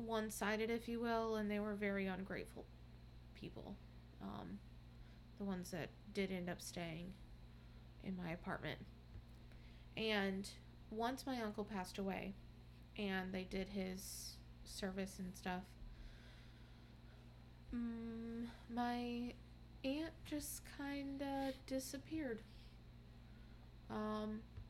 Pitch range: 175-220 Hz